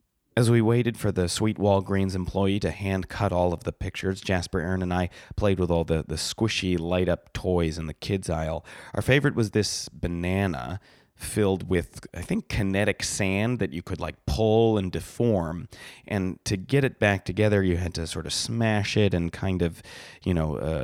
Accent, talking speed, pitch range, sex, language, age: American, 195 wpm, 85-100 Hz, male, English, 30-49